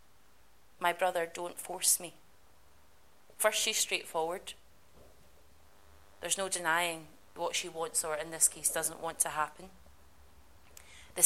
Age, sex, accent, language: 20-39, female, British, English